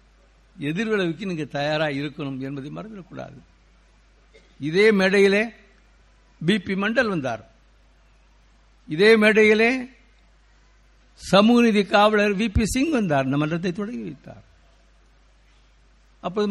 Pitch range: 155-225 Hz